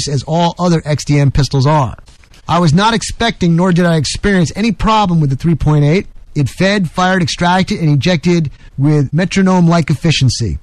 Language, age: English, 30-49